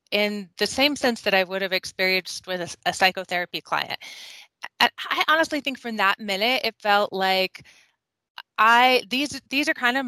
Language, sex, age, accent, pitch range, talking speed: English, female, 20-39, American, 190-235 Hz, 175 wpm